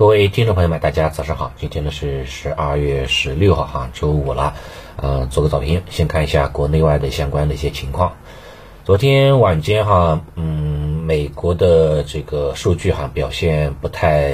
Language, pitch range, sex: Chinese, 70-85 Hz, male